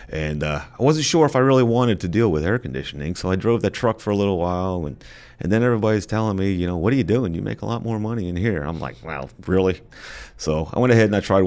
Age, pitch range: 30-49, 80-100 Hz